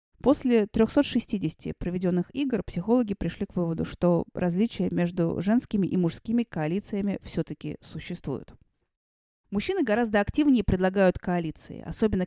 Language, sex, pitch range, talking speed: Russian, female, 165-215 Hz, 110 wpm